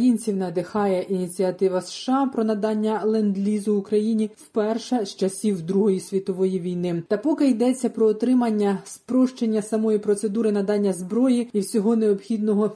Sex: female